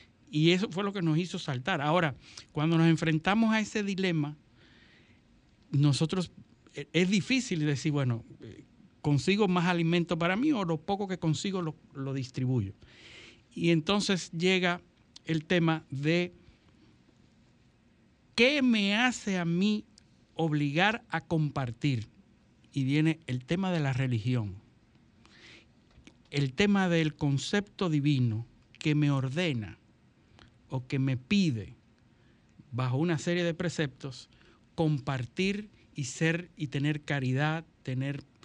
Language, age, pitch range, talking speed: Spanish, 60-79, 125-175 Hz, 120 wpm